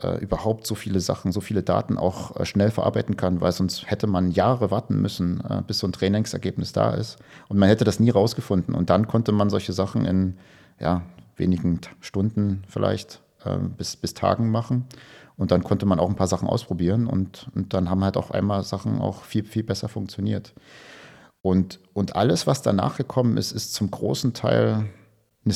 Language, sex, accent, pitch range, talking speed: German, male, German, 95-110 Hz, 185 wpm